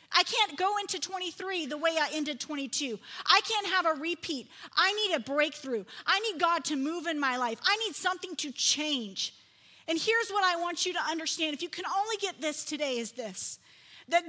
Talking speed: 210 wpm